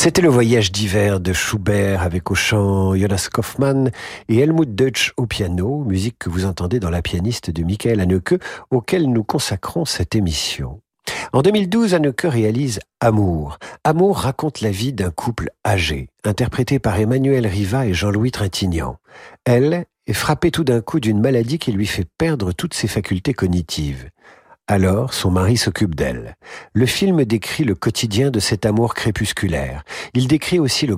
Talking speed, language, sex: 170 wpm, French, male